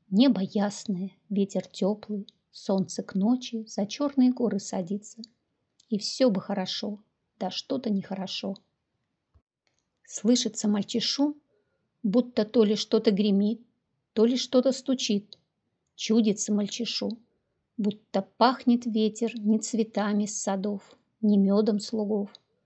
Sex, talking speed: female, 110 wpm